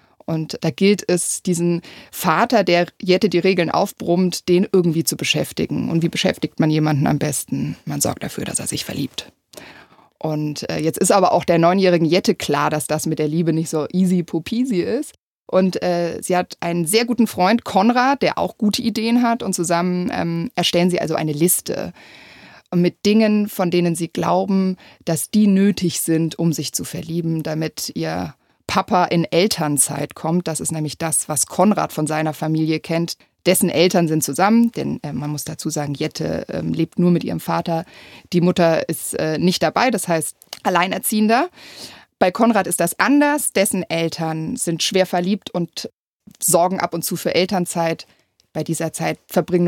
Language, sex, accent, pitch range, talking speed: German, female, German, 160-190 Hz, 180 wpm